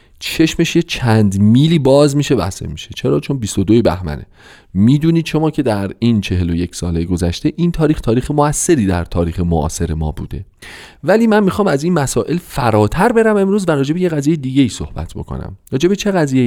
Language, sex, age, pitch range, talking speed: Persian, male, 40-59, 95-155 Hz, 185 wpm